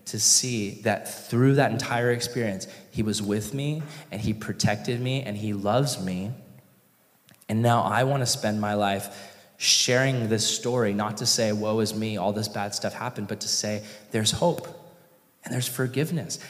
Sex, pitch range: male, 105-145 Hz